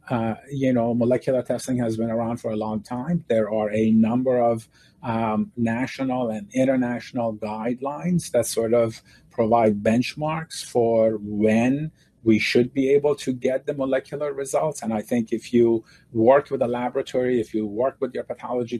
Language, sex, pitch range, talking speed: English, male, 110-130 Hz, 170 wpm